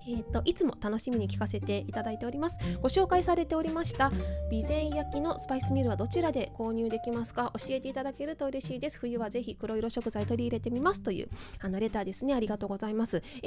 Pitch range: 190-280 Hz